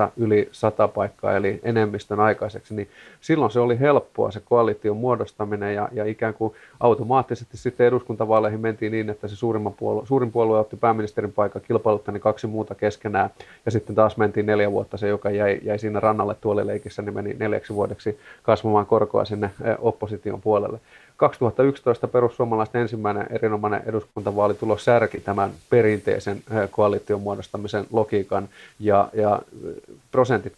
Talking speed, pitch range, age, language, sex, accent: 145 wpm, 105-115 Hz, 30-49, Finnish, male, native